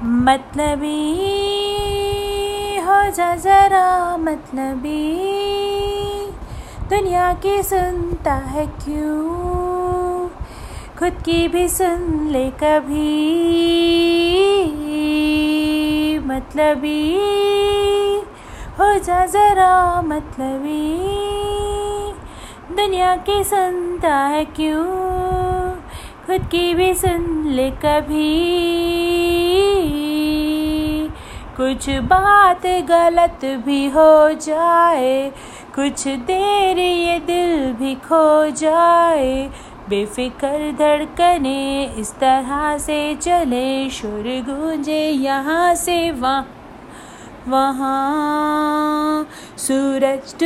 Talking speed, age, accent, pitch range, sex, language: 70 wpm, 30-49, native, 280-360 Hz, female, Hindi